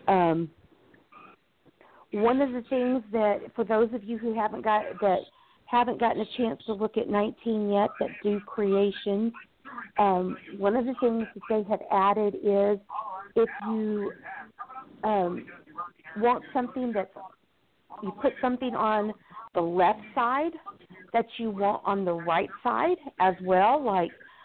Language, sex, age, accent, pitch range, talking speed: English, female, 50-69, American, 200-240 Hz, 145 wpm